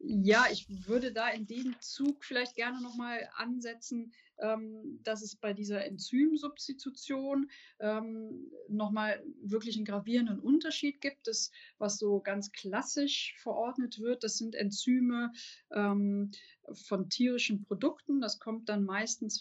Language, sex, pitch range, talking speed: German, female, 205-260 Hz, 120 wpm